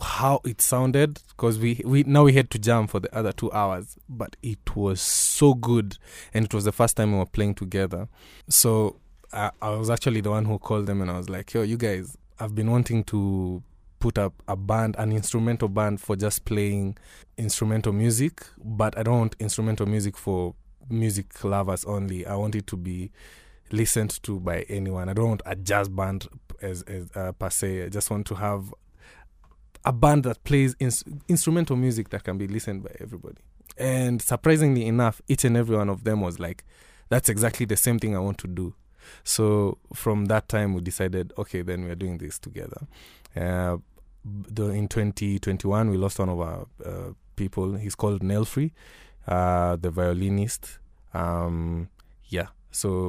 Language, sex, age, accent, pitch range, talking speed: English, male, 20-39, South African, 95-115 Hz, 185 wpm